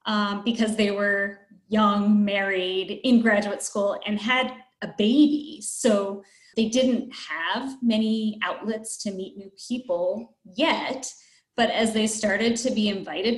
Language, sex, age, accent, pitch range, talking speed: English, female, 20-39, American, 200-245 Hz, 140 wpm